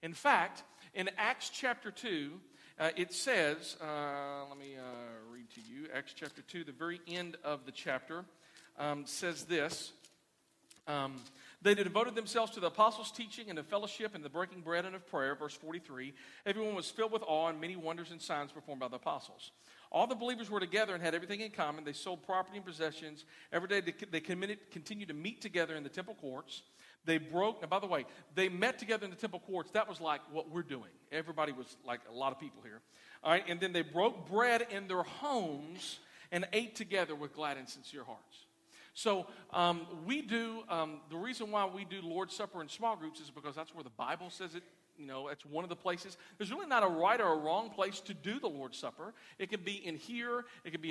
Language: English